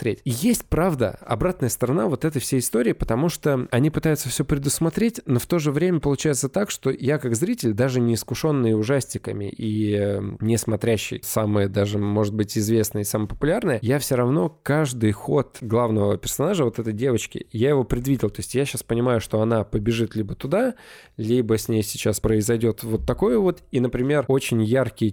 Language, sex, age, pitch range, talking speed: Russian, male, 20-39, 110-135 Hz, 180 wpm